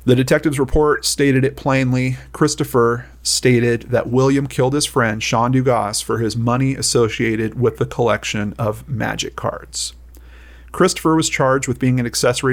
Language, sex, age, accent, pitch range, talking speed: English, male, 40-59, American, 110-135 Hz, 155 wpm